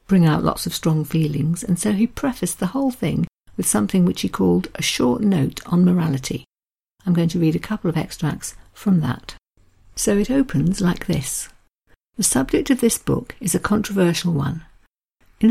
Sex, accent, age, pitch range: female, British, 50-69, 160-205 Hz